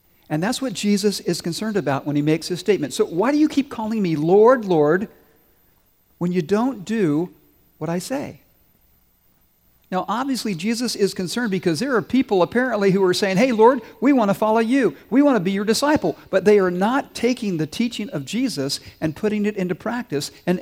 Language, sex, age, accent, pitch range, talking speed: English, male, 50-69, American, 145-210 Hz, 200 wpm